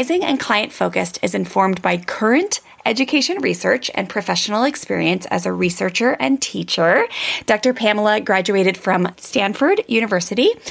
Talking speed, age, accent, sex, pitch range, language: 130 wpm, 20-39, American, female, 180-250 Hz, English